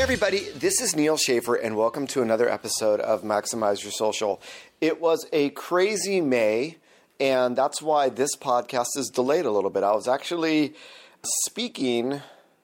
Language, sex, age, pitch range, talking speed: English, male, 30-49, 110-140 Hz, 160 wpm